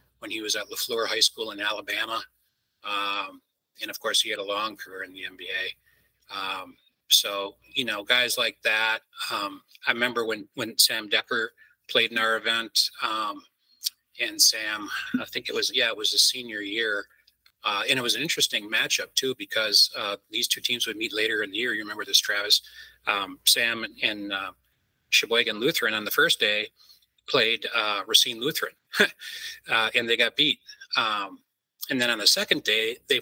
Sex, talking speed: male, 185 wpm